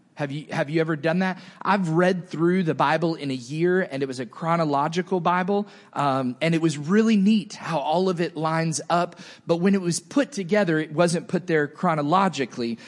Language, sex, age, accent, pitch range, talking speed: English, male, 30-49, American, 155-200 Hz, 200 wpm